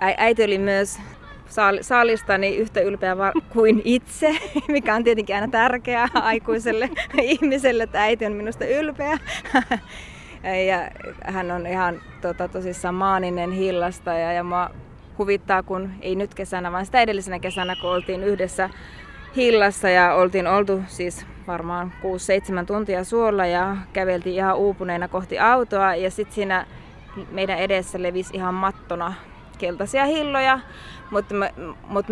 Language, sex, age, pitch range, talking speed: Finnish, female, 20-39, 180-210 Hz, 130 wpm